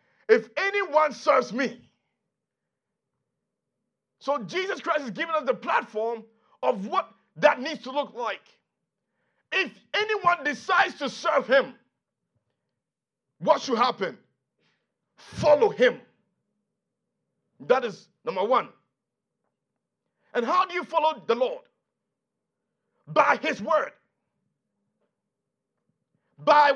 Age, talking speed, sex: 50-69, 100 wpm, male